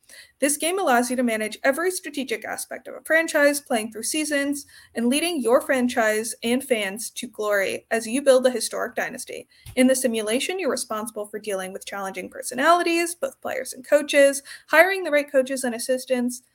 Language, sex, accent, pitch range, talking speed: English, female, American, 225-290 Hz, 180 wpm